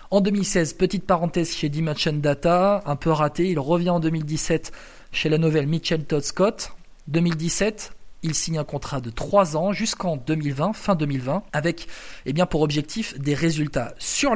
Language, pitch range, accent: French, 145-180 Hz, French